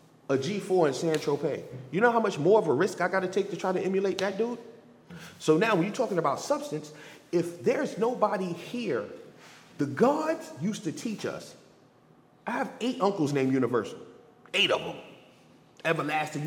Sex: male